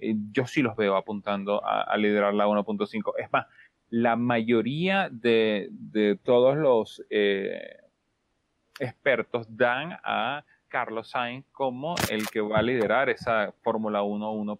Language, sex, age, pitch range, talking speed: Spanish, male, 30-49, 105-135 Hz, 135 wpm